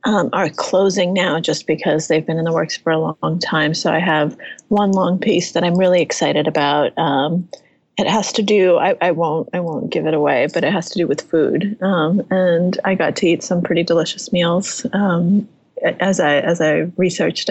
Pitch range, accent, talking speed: 165-200 Hz, American, 215 wpm